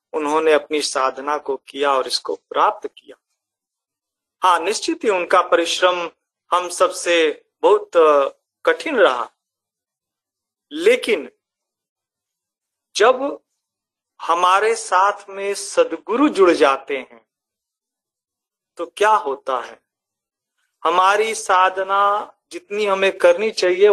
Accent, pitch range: native, 175-275 Hz